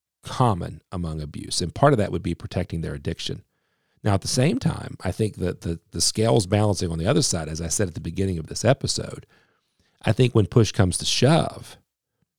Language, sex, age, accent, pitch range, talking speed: English, male, 40-59, American, 85-105 Hz, 215 wpm